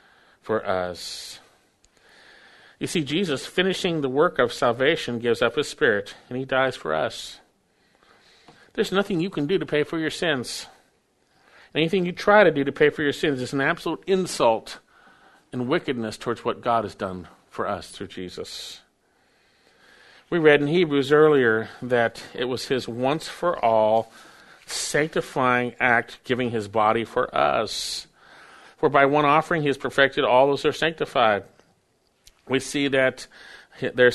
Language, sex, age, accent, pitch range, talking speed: English, male, 50-69, American, 115-145 Hz, 155 wpm